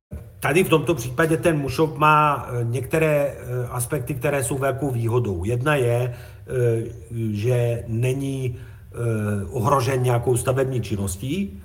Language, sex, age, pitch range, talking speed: Slovak, male, 50-69, 115-135 Hz, 110 wpm